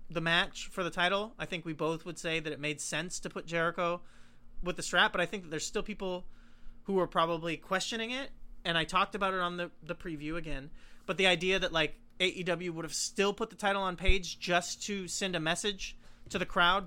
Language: English